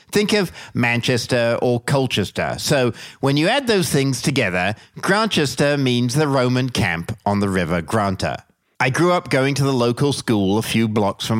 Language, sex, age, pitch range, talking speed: English, male, 50-69, 110-140 Hz, 175 wpm